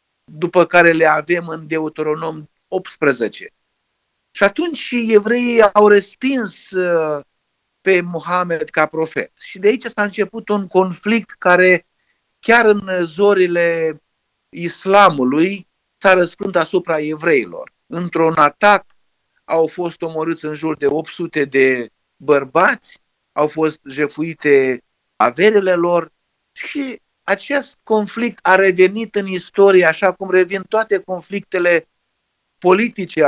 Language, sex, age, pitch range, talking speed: Romanian, male, 50-69, 155-195 Hz, 110 wpm